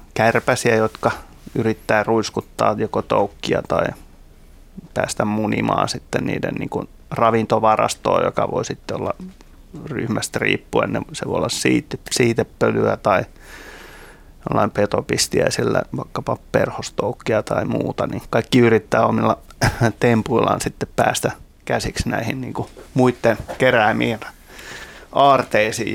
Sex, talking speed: male, 95 wpm